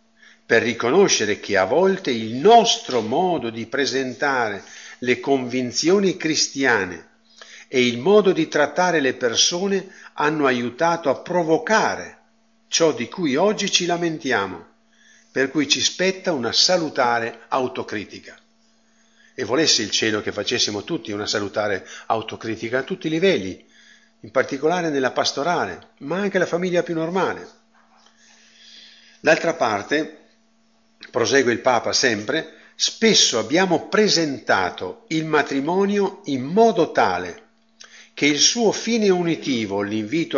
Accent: native